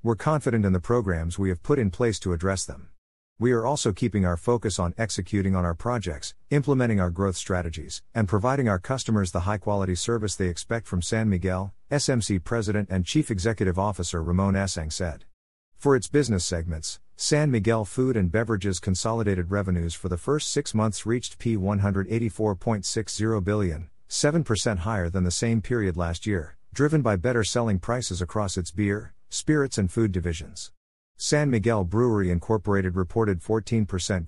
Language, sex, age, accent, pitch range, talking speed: English, male, 50-69, American, 90-115 Hz, 165 wpm